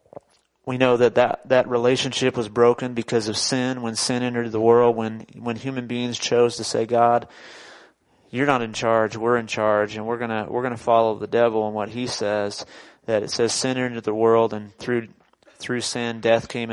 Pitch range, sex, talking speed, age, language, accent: 115-130 Hz, male, 200 wpm, 30-49, English, American